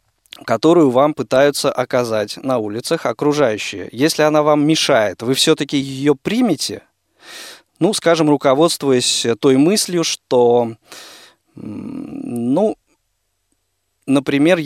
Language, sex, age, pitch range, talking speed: Russian, male, 20-39, 125-160 Hz, 95 wpm